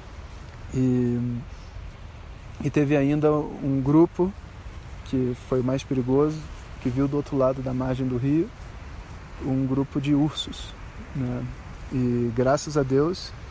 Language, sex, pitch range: Portuguese, male, 125-145 Hz